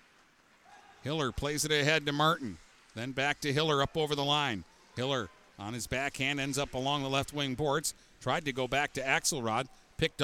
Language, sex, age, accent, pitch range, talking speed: English, male, 50-69, American, 125-150 Hz, 190 wpm